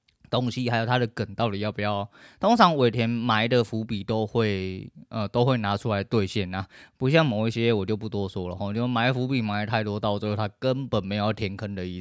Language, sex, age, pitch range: Chinese, male, 20-39, 100-120 Hz